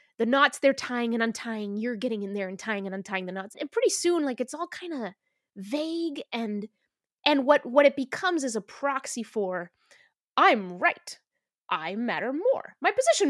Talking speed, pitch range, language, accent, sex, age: 190 wpm, 215-300 Hz, English, American, female, 20-39